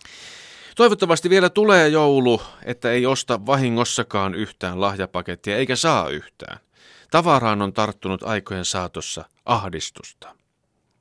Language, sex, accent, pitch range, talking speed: Finnish, male, native, 100-150 Hz, 105 wpm